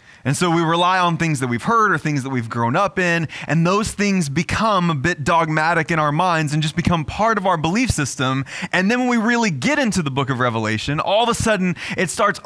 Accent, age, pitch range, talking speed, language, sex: American, 20-39, 135-185 Hz, 245 wpm, English, male